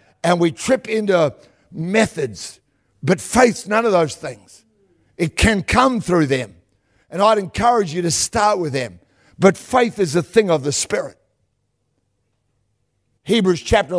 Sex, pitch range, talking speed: male, 135-200 Hz, 145 wpm